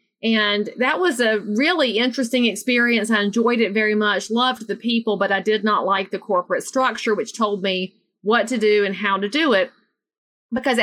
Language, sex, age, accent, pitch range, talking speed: English, female, 40-59, American, 195-230 Hz, 195 wpm